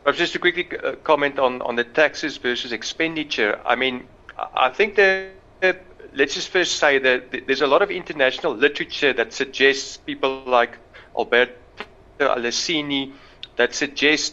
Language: English